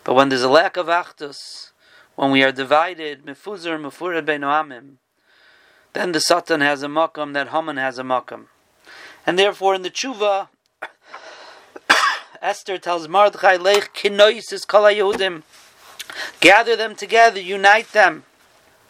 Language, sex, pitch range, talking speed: Indonesian, male, 160-205 Hz, 130 wpm